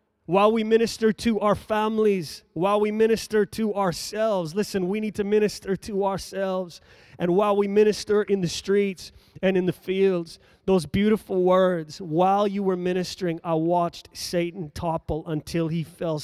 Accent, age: American, 30-49